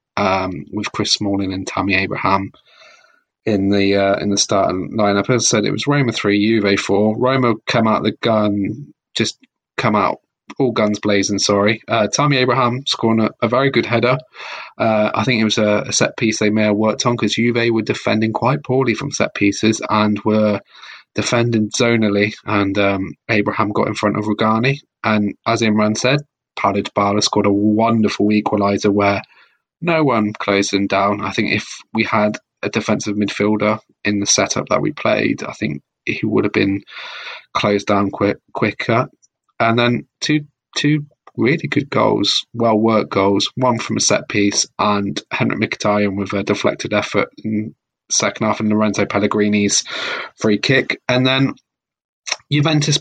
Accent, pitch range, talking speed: British, 100-120 Hz, 170 wpm